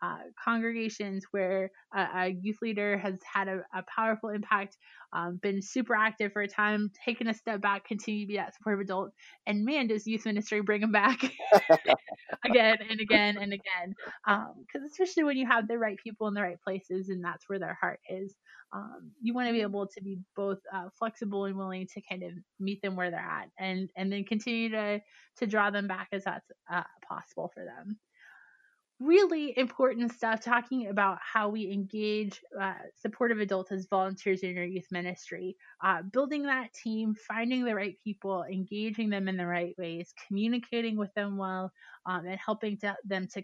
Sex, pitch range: female, 190-225 Hz